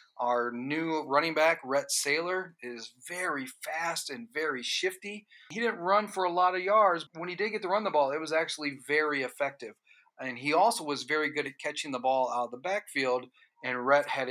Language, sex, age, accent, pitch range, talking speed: English, male, 40-59, American, 125-165 Hz, 210 wpm